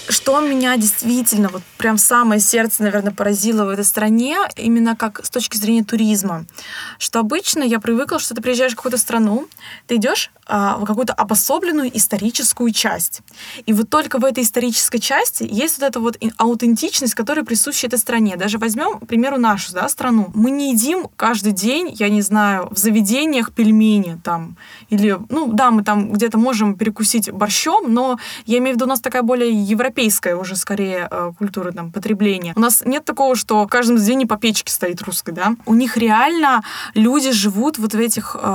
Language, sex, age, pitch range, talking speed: Russian, female, 20-39, 210-255 Hz, 180 wpm